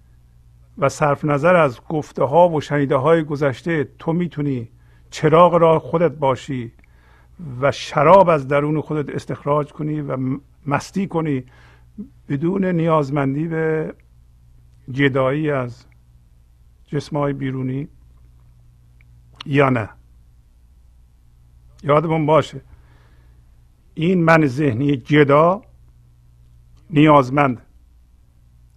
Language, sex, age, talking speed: Persian, male, 50-69, 90 wpm